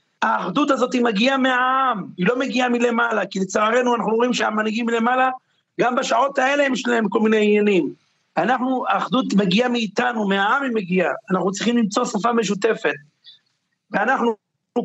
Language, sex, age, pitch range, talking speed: Hebrew, male, 50-69, 190-240 Hz, 145 wpm